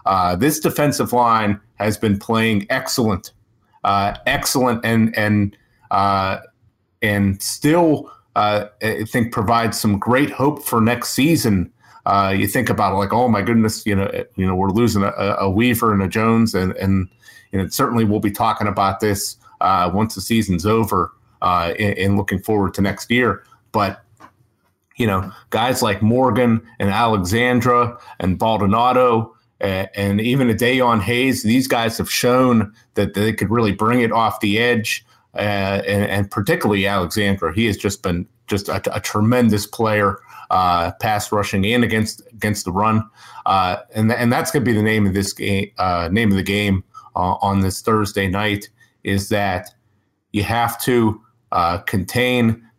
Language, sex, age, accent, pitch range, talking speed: English, male, 30-49, American, 100-120 Hz, 170 wpm